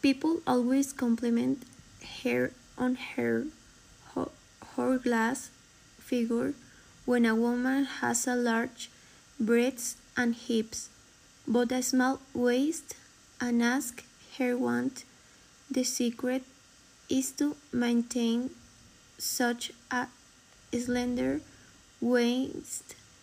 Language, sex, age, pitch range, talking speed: English, female, 20-39, 235-270 Hz, 90 wpm